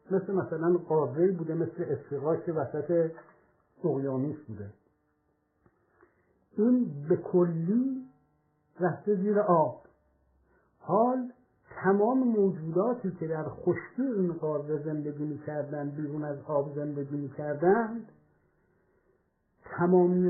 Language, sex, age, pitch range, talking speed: Persian, male, 60-79, 145-185 Hz, 95 wpm